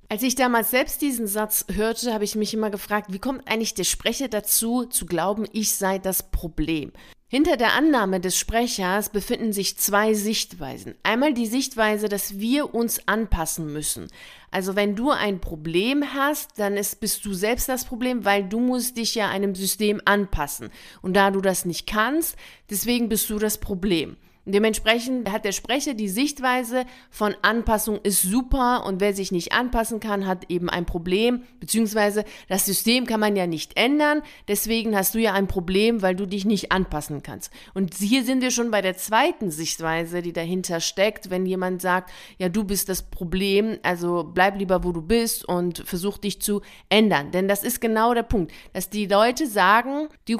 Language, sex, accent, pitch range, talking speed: German, female, German, 190-235 Hz, 185 wpm